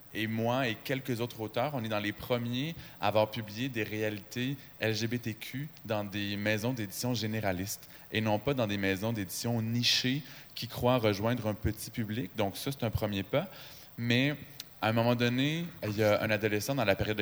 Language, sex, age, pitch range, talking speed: French, male, 20-39, 100-130 Hz, 190 wpm